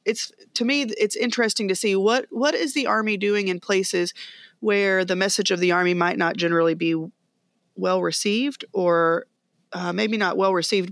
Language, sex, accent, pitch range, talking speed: English, female, American, 180-235 Hz, 180 wpm